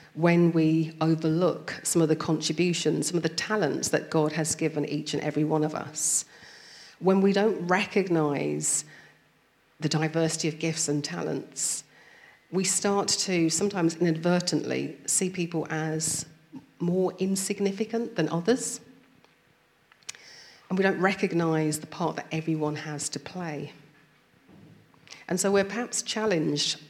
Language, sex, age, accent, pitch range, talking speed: English, female, 40-59, British, 155-185 Hz, 130 wpm